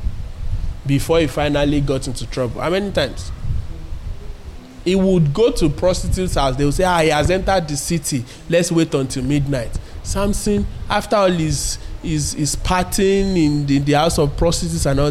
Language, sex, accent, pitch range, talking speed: English, male, Nigerian, 125-195 Hz, 175 wpm